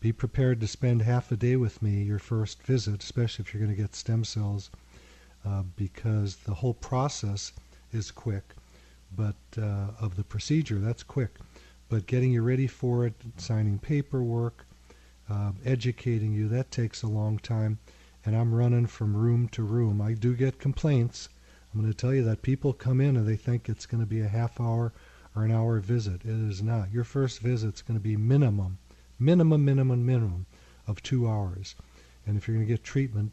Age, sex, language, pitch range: 40-59, male, English, 105-120 Hz